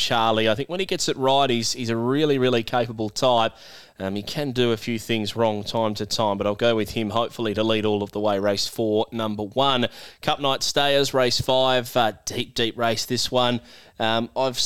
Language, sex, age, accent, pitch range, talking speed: English, male, 20-39, Australian, 115-130 Hz, 225 wpm